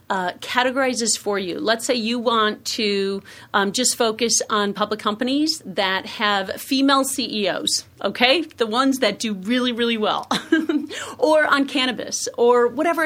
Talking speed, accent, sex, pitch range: 145 wpm, American, female, 205-250 Hz